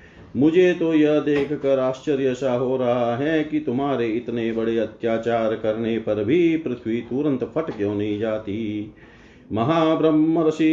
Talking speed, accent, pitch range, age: 125 wpm, native, 110-150 Hz, 40-59